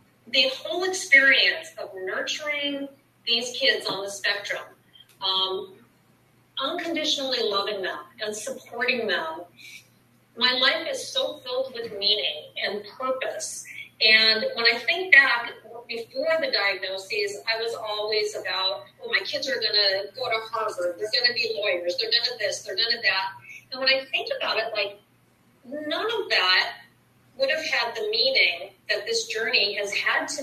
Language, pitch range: English, 220-330 Hz